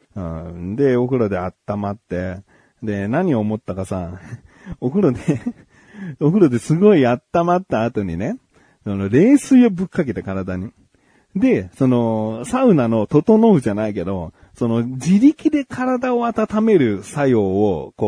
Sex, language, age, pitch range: male, Japanese, 40-59, 105-170 Hz